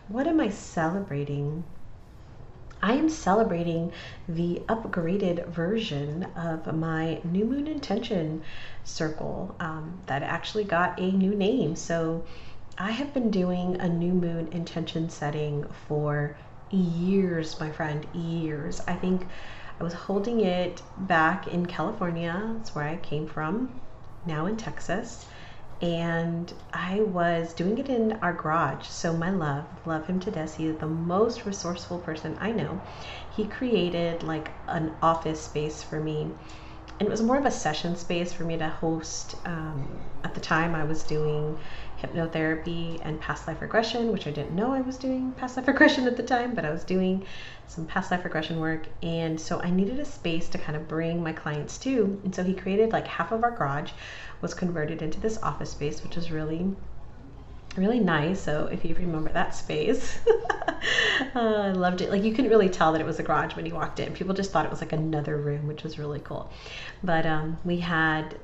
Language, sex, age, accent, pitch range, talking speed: English, female, 30-49, American, 155-190 Hz, 180 wpm